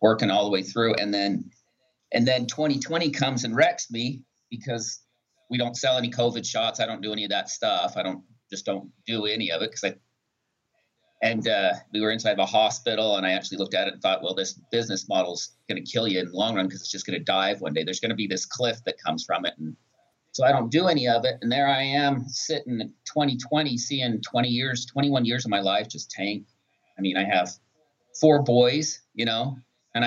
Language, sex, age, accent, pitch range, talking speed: English, male, 40-59, American, 110-135 Hz, 240 wpm